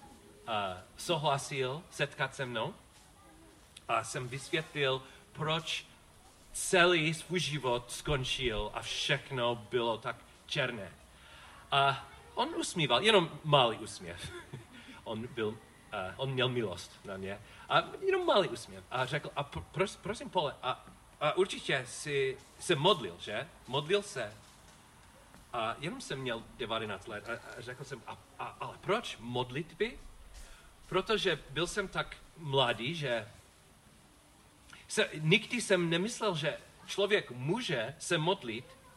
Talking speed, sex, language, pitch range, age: 125 wpm, male, Czech, 120-175 Hz, 40-59